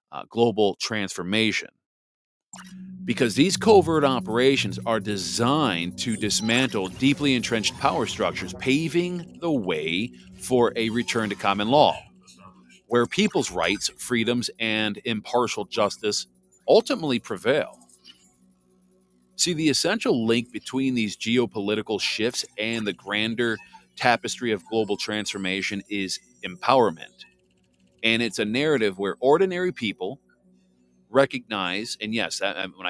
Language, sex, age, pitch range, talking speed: English, male, 40-59, 90-125 Hz, 110 wpm